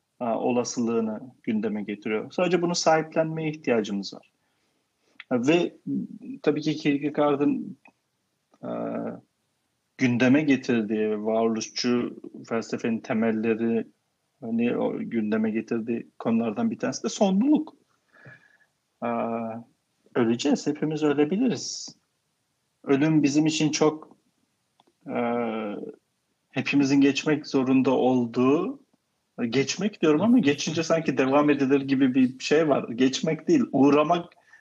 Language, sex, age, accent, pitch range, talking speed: Turkish, male, 40-59, native, 125-165 Hz, 95 wpm